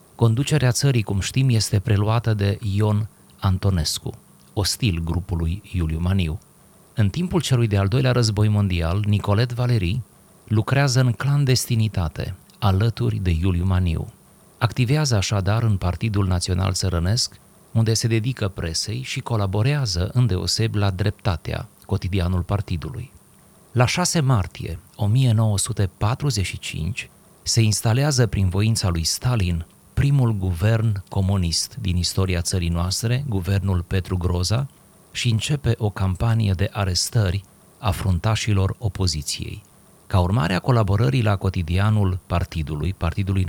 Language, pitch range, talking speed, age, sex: Romanian, 95-115 Hz, 115 wpm, 30-49, male